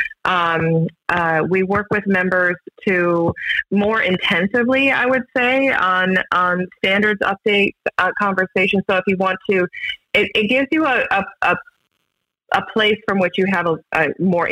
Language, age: English, 30-49